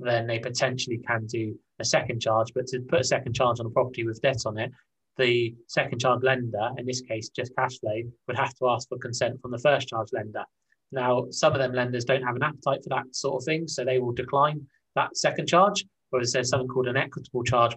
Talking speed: 235 wpm